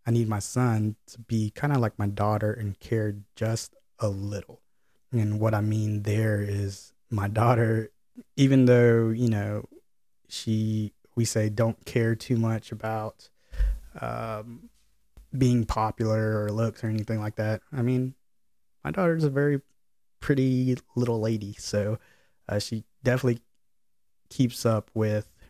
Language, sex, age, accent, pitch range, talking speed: English, male, 20-39, American, 105-120 Hz, 145 wpm